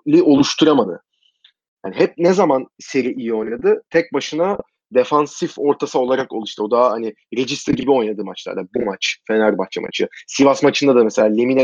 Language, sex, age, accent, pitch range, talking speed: Turkish, male, 30-49, native, 130-175 Hz, 155 wpm